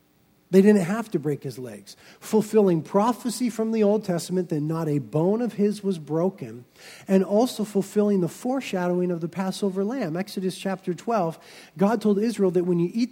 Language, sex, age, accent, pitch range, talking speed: English, male, 40-59, American, 165-215 Hz, 185 wpm